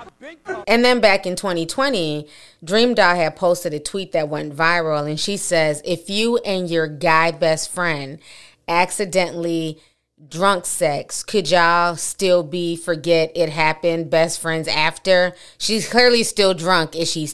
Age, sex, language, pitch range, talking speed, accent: 30-49, female, English, 160-195 Hz, 150 wpm, American